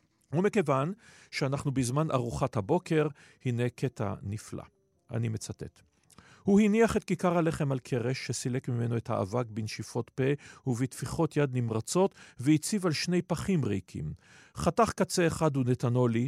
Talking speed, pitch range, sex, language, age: 135 wpm, 120-160 Hz, male, Hebrew, 40-59